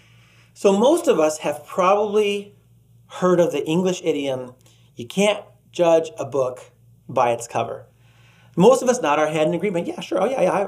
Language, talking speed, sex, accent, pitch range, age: English, 180 wpm, male, American, 155-210 Hz, 30-49